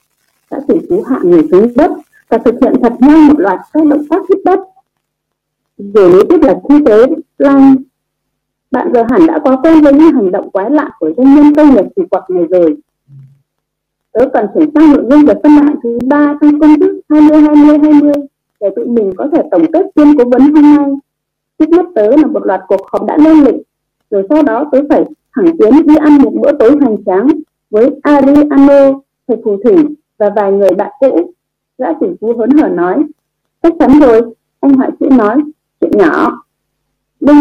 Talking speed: 210 wpm